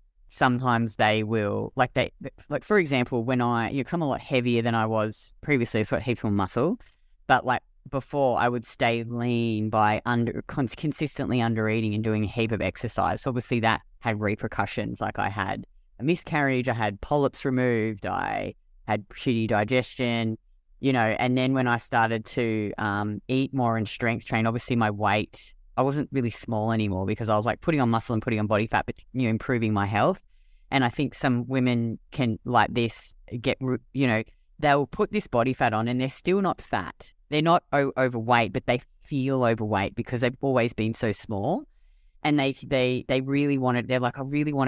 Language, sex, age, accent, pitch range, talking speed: English, female, 20-39, Australian, 110-135 Hz, 200 wpm